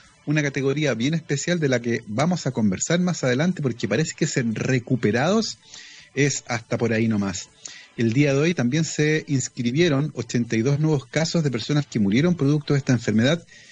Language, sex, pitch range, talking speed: Spanish, male, 115-150 Hz, 175 wpm